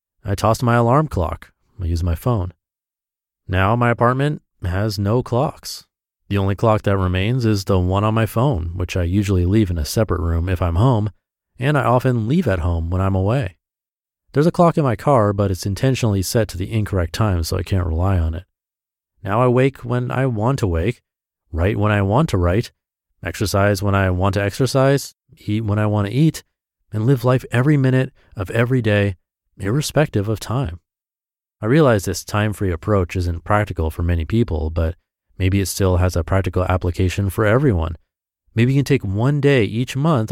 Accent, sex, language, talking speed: American, male, English, 195 wpm